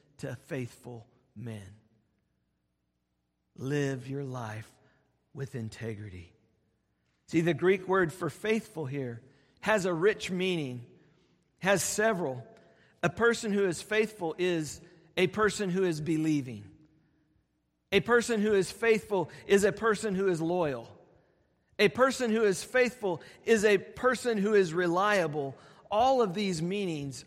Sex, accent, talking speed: male, American, 130 wpm